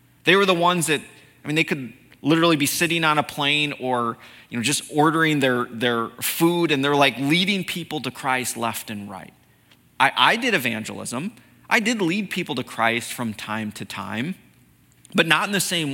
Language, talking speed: English, 195 wpm